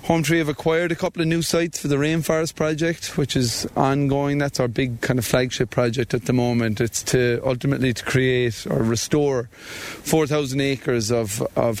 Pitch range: 115-140 Hz